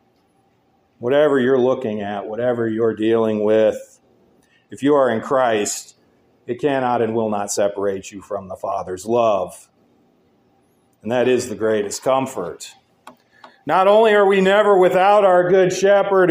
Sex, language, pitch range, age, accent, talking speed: male, English, 120-190 Hz, 40-59, American, 145 wpm